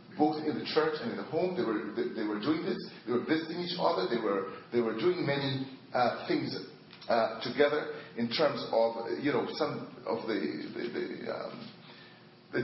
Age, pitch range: 40-59, 120-185 Hz